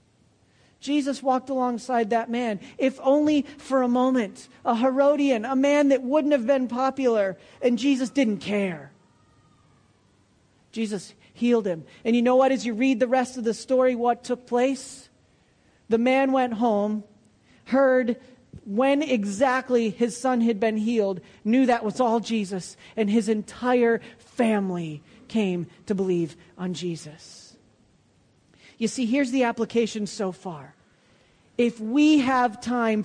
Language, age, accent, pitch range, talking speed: English, 40-59, American, 200-255 Hz, 140 wpm